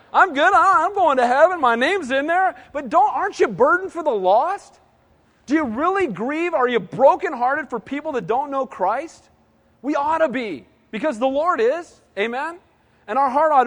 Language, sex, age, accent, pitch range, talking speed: English, male, 40-59, American, 185-250 Hz, 195 wpm